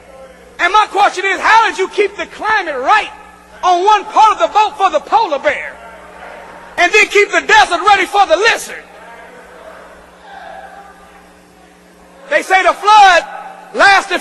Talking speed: 135 wpm